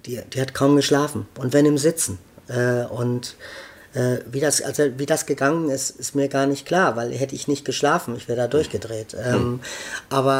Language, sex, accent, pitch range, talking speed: German, male, German, 130-150 Hz, 200 wpm